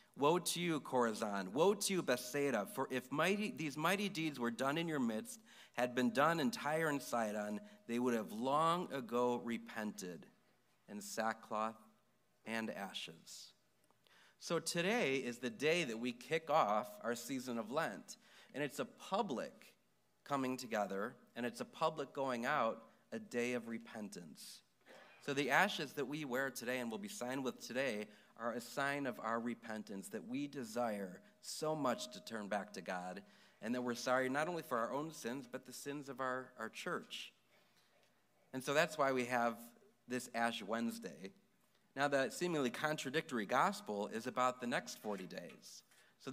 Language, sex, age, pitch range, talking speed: English, male, 40-59, 115-150 Hz, 170 wpm